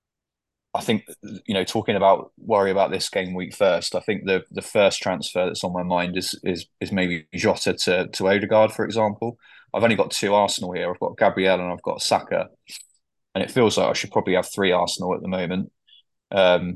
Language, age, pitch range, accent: English, 20-39, 90-100 Hz, British